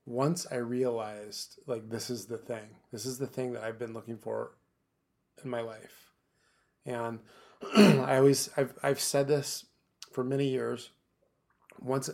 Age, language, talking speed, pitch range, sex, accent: 30-49, English, 160 wpm, 115-130 Hz, male, American